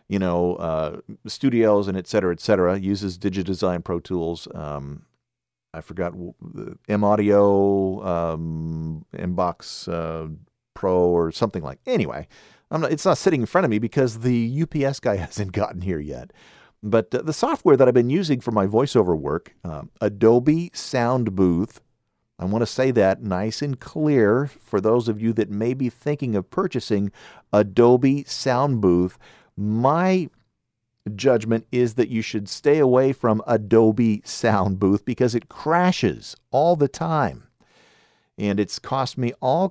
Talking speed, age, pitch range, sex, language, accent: 155 wpm, 50-69, 90-125 Hz, male, English, American